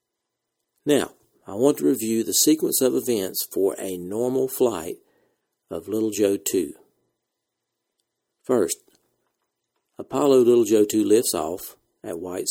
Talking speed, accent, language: 125 wpm, American, English